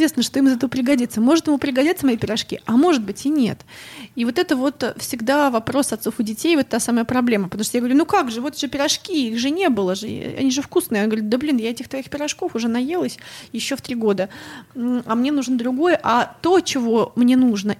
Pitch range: 225-280 Hz